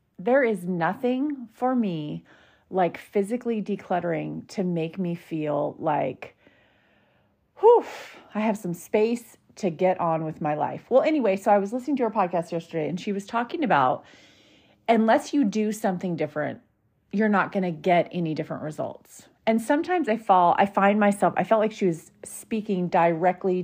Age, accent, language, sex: 30-49, American, English, female